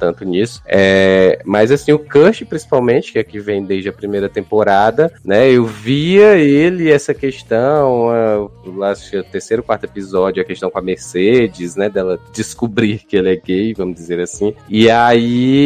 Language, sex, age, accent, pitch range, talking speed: Portuguese, male, 20-39, Brazilian, 110-150 Hz, 180 wpm